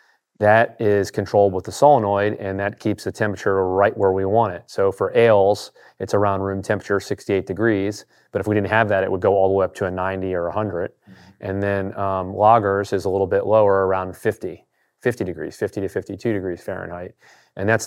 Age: 30-49